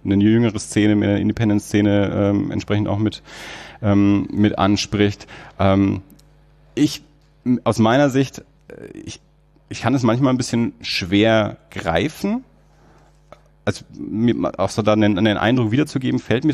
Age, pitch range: 30-49, 95-115 Hz